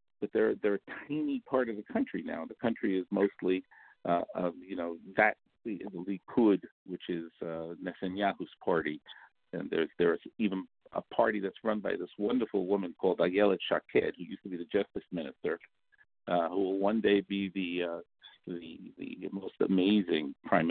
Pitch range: 95-140 Hz